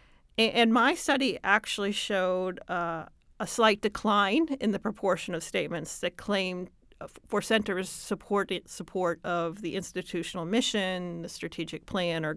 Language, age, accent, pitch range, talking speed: English, 40-59, American, 180-235 Hz, 140 wpm